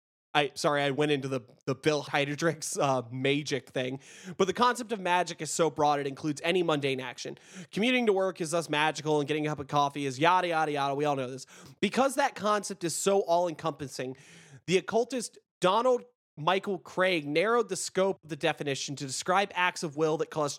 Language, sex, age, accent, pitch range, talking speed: English, male, 20-39, American, 140-180 Hz, 200 wpm